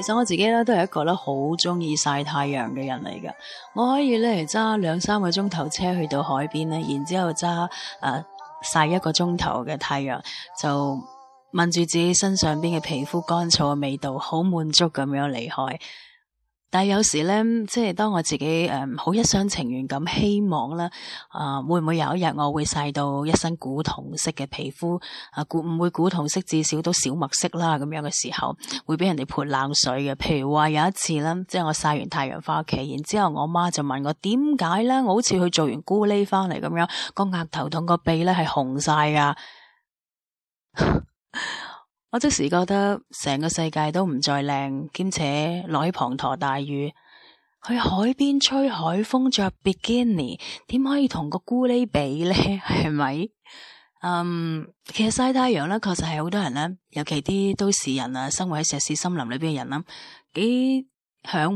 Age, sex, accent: 30-49, female, native